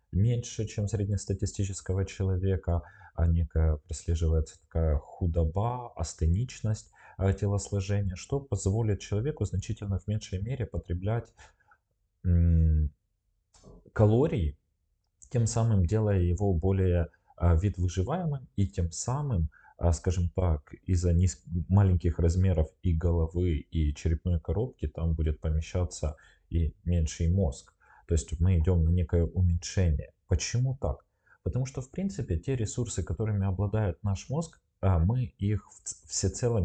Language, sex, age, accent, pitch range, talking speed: Russian, male, 20-39, native, 85-100 Hz, 110 wpm